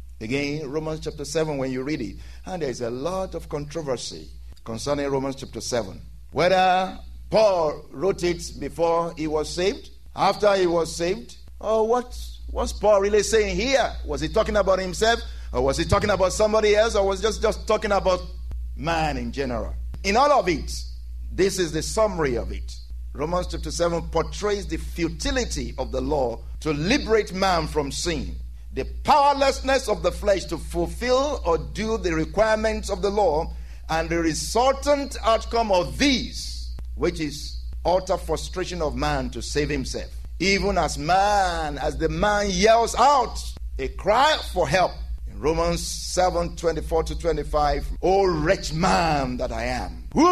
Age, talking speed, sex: 50-69, 165 wpm, male